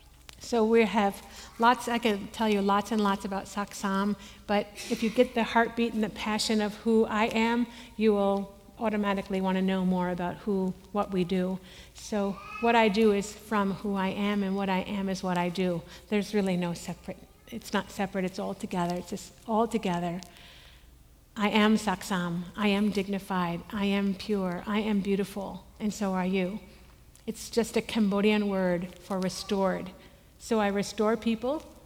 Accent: American